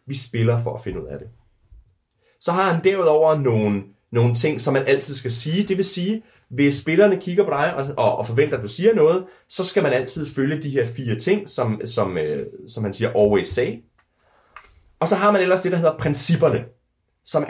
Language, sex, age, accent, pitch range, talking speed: Danish, male, 30-49, native, 115-170 Hz, 215 wpm